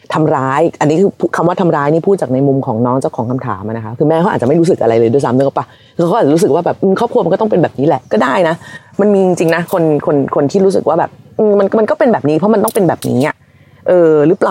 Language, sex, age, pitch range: Thai, female, 30-49, 130-190 Hz